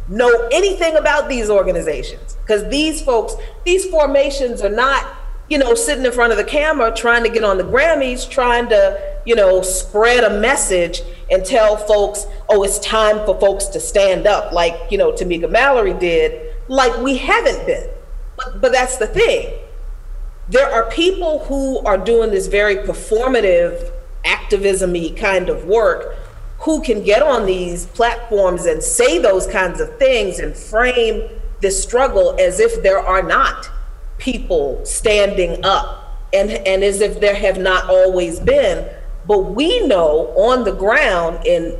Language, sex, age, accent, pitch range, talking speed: English, female, 40-59, American, 195-315 Hz, 160 wpm